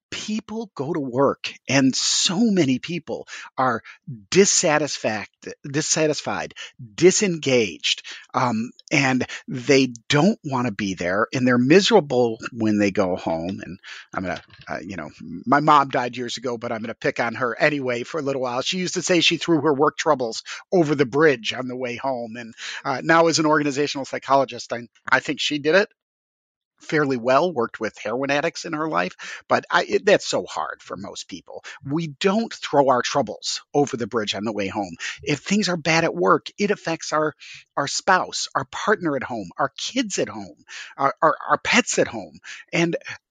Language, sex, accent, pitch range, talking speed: English, male, American, 125-170 Hz, 185 wpm